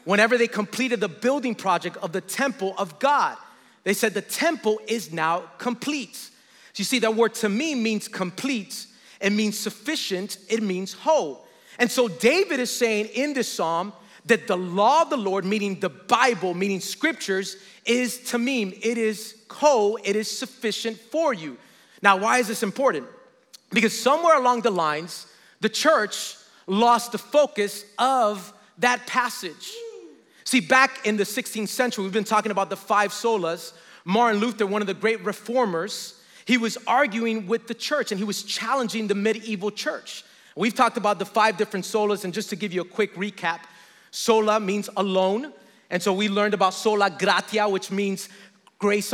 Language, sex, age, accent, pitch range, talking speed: English, male, 30-49, American, 200-240 Hz, 170 wpm